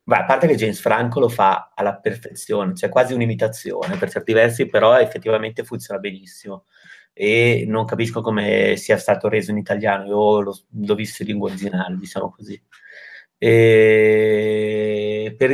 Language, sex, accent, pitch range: Italian, male, native, 105-120 Hz